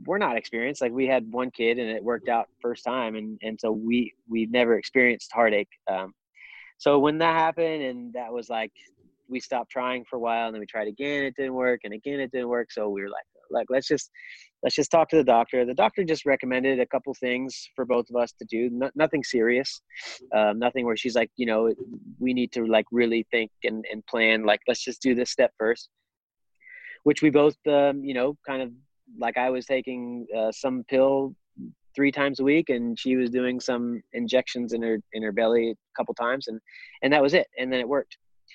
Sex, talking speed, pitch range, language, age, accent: male, 225 wpm, 115-140 Hz, English, 30-49, American